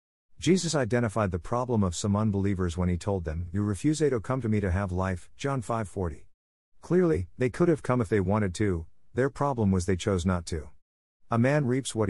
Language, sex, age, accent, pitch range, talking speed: English, male, 50-69, American, 90-120 Hz, 215 wpm